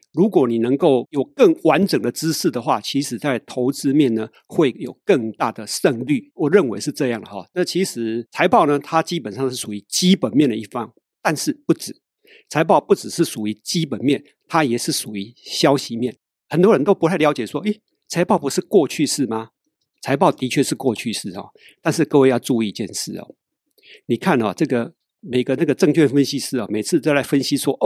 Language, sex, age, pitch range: Chinese, male, 50-69, 125-170 Hz